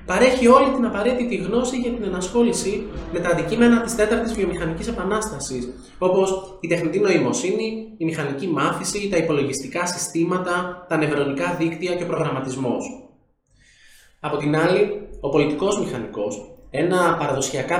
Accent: native